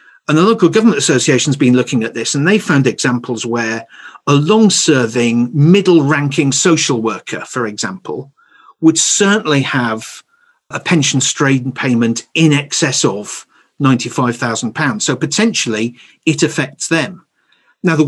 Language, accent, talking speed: English, British, 135 wpm